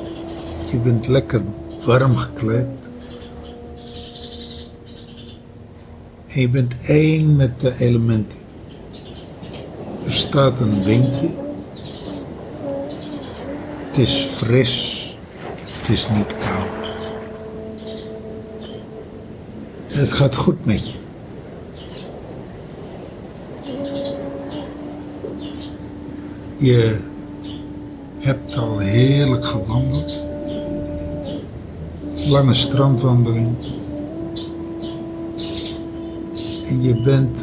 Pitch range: 100-130 Hz